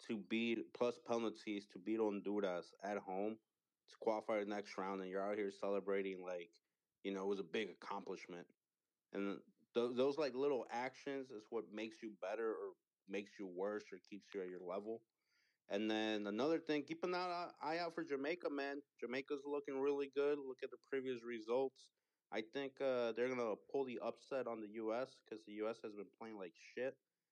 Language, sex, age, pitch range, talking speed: English, male, 30-49, 100-125 Hz, 195 wpm